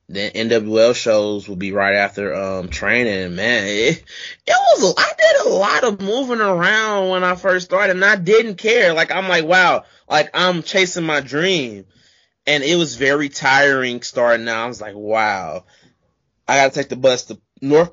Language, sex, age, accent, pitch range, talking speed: English, male, 20-39, American, 115-175 Hz, 190 wpm